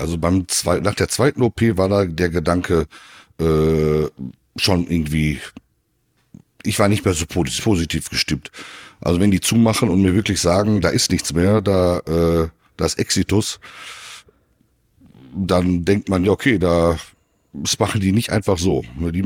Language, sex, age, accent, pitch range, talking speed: German, male, 60-79, German, 85-105 Hz, 155 wpm